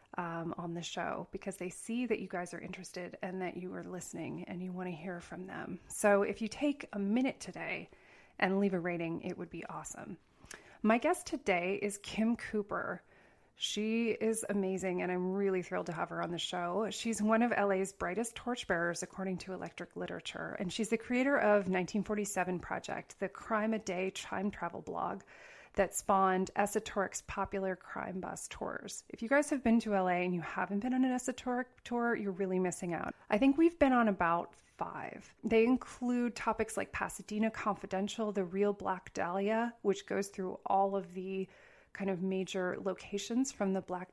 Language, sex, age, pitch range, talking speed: English, female, 30-49, 185-225 Hz, 190 wpm